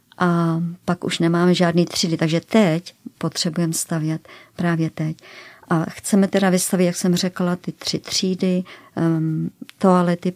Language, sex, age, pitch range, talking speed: Czech, male, 40-59, 170-185 Hz, 135 wpm